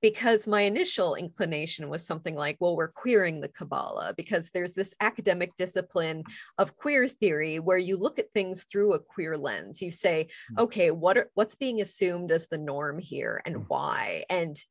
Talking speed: 170 wpm